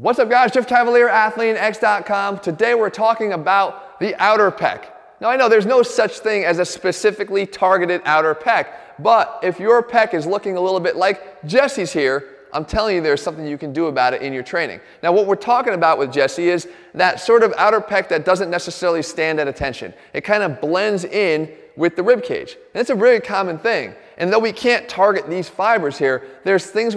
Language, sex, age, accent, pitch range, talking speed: English, male, 30-49, American, 165-215 Hz, 210 wpm